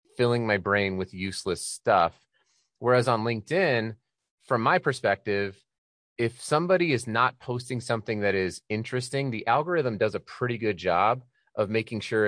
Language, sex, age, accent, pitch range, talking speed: English, male, 30-49, American, 95-115 Hz, 150 wpm